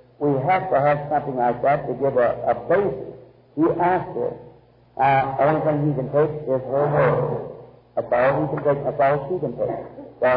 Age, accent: 50-69, American